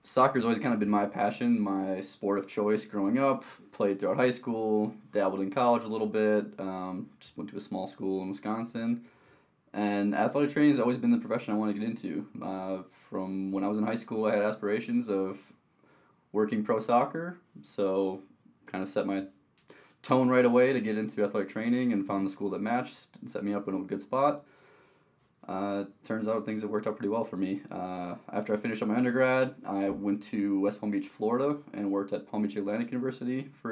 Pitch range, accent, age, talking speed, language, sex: 100-130 Hz, American, 20-39, 215 wpm, English, male